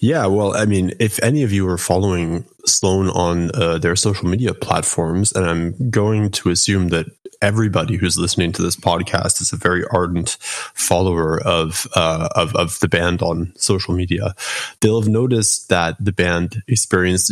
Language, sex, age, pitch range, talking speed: English, male, 20-39, 90-110 Hz, 175 wpm